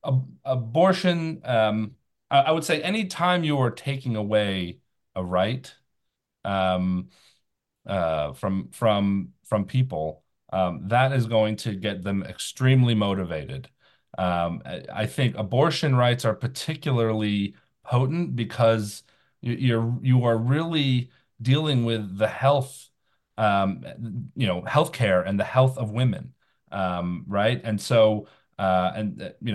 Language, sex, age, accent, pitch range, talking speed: English, male, 40-59, American, 105-140 Hz, 120 wpm